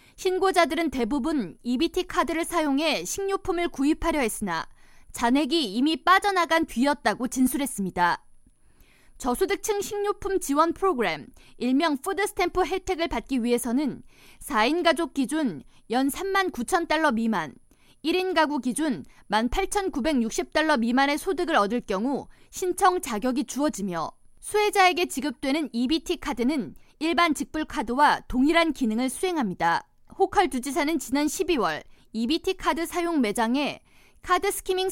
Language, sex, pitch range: Korean, female, 260-365 Hz